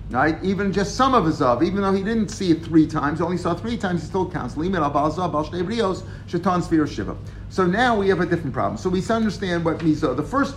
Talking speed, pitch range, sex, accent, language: 210 wpm, 140-180 Hz, male, American, English